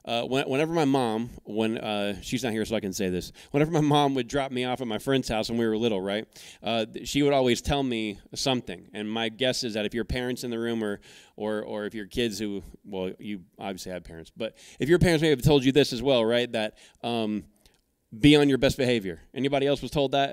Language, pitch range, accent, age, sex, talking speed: English, 115-140 Hz, American, 20-39, male, 250 wpm